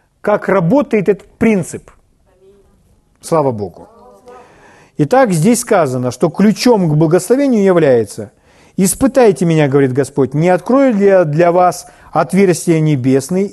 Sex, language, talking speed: male, Russian, 115 wpm